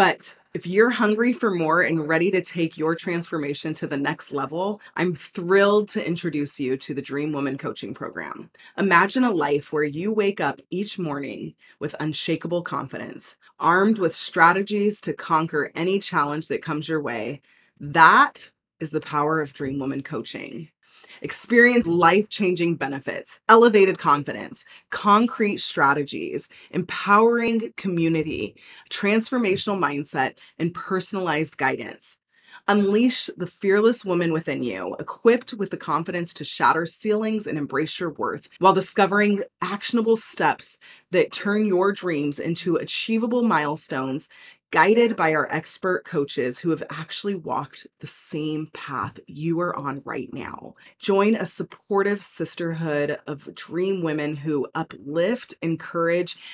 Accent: American